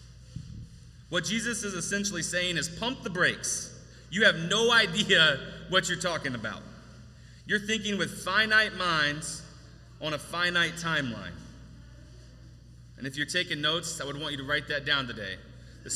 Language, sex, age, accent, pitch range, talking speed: English, male, 30-49, American, 135-195 Hz, 155 wpm